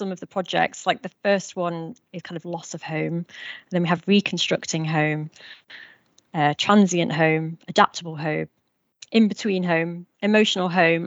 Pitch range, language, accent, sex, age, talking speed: 165-200 Hz, English, British, female, 30-49, 150 wpm